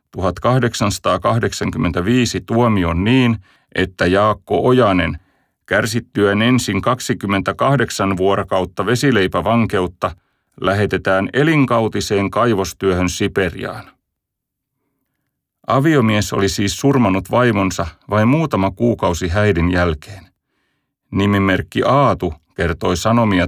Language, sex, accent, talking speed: Finnish, male, native, 75 wpm